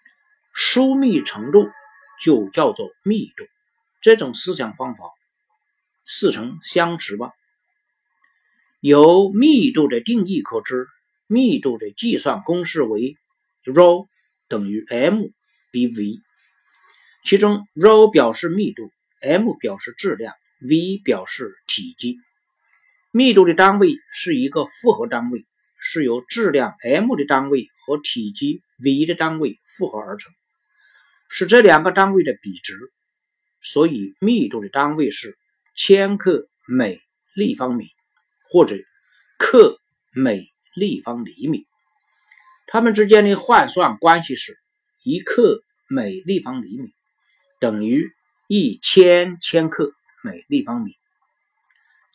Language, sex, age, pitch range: Chinese, male, 50-69, 175-270 Hz